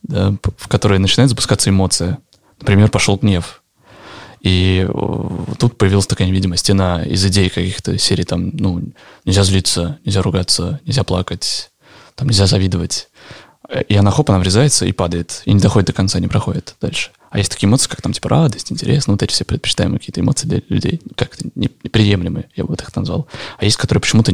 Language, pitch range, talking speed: Russian, 95-115 Hz, 180 wpm